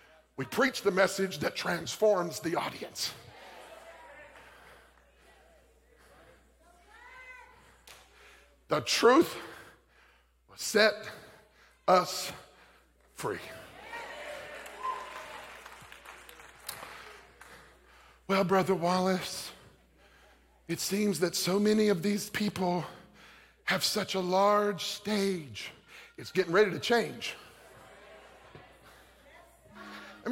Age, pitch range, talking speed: 50-69, 170-220 Hz, 70 wpm